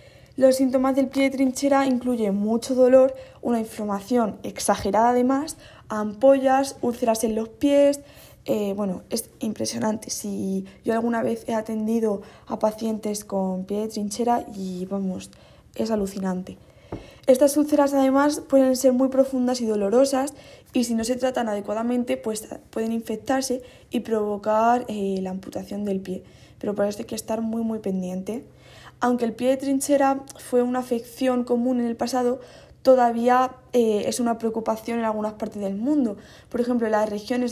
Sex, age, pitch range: female, 20-39, 210-250 Hz